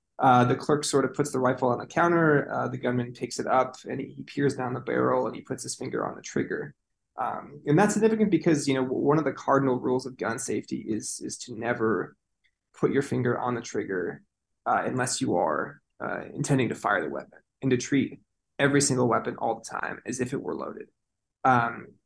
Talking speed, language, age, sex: 220 wpm, English, 20-39, male